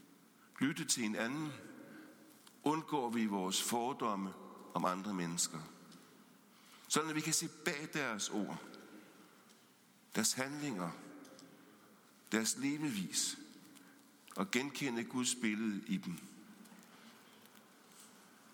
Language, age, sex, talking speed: English, 60-79, male, 95 wpm